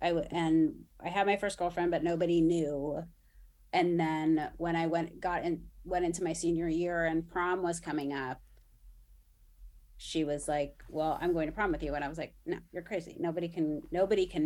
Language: English